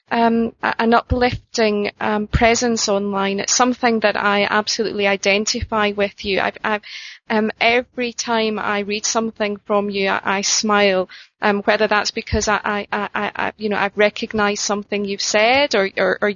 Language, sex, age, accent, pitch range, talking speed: English, female, 30-49, British, 205-235 Hz, 170 wpm